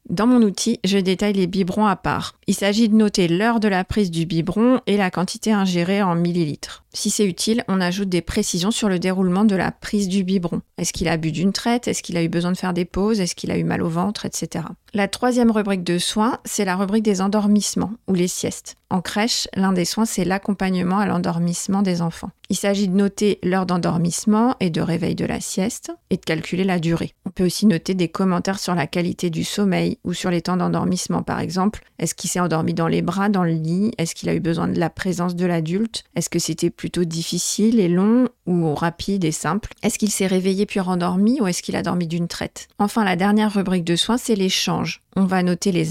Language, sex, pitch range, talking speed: French, female, 175-205 Hz, 235 wpm